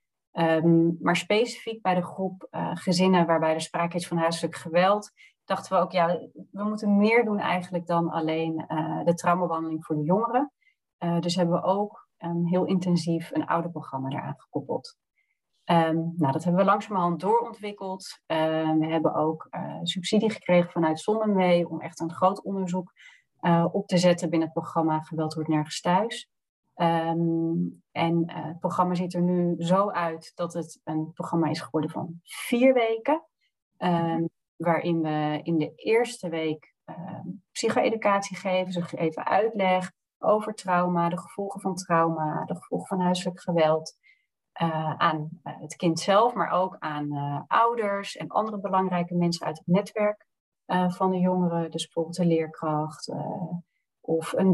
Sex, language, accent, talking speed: female, Dutch, Dutch, 165 wpm